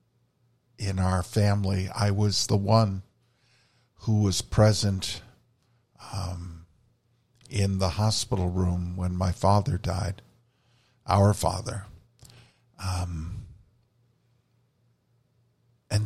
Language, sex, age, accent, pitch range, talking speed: English, male, 50-69, American, 100-120 Hz, 85 wpm